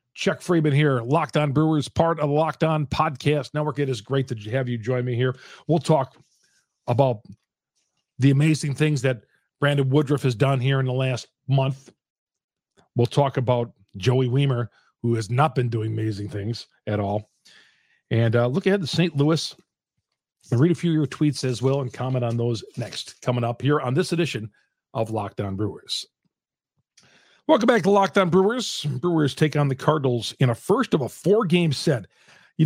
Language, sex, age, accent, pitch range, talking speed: English, male, 40-59, American, 130-165 Hz, 185 wpm